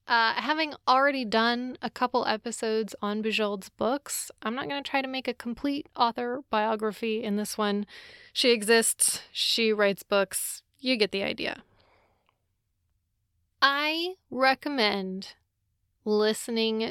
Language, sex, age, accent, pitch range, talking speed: English, female, 20-39, American, 190-245 Hz, 130 wpm